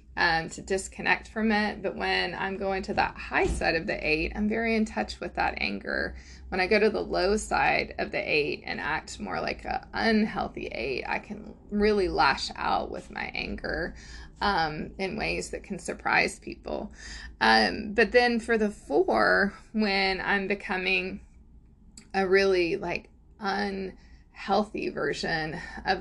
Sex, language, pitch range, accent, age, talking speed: female, English, 170-210 Hz, American, 20-39, 160 wpm